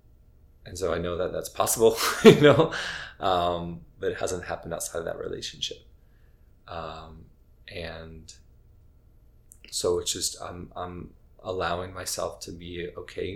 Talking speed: 135 wpm